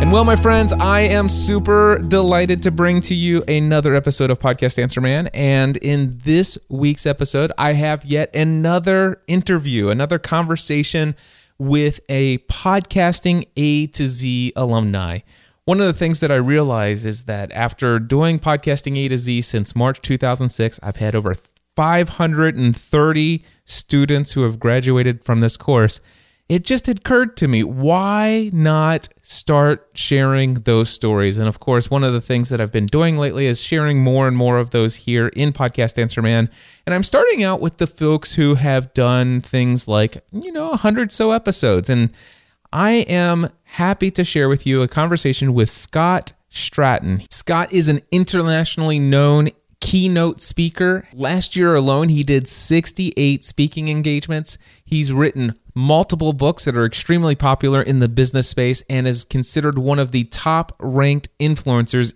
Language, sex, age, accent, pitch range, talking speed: English, male, 30-49, American, 125-160 Hz, 160 wpm